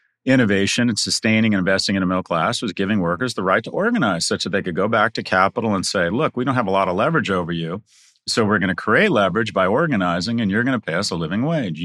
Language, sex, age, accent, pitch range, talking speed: English, male, 40-59, American, 105-160 Hz, 270 wpm